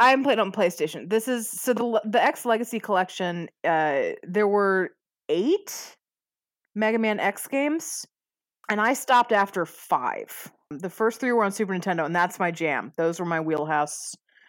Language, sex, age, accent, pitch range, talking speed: English, female, 20-39, American, 170-225 Hz, 165 wpm